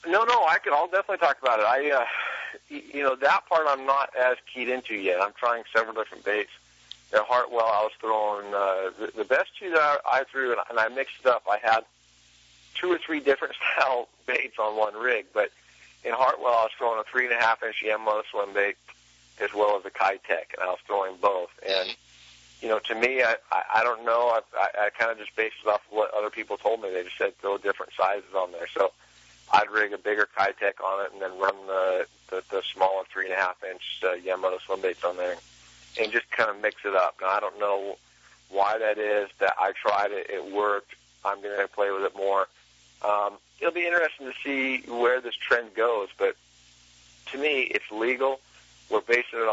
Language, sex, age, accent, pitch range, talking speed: English, male, 40-59, American, 95-125 Hz, 220 wpm